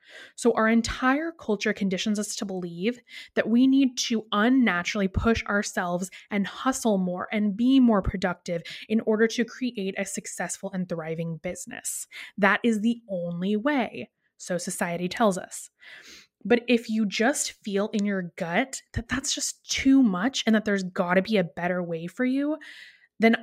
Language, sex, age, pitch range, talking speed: English, female, 20-39, 190-240 Hz, 165 wpm